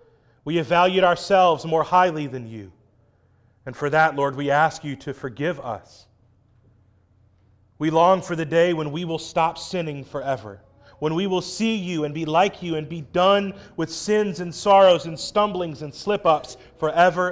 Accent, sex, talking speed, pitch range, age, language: American, male, 175 wpm, 125-175 Hz, 30-49, English